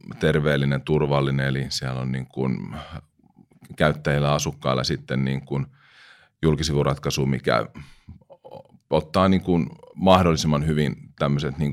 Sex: male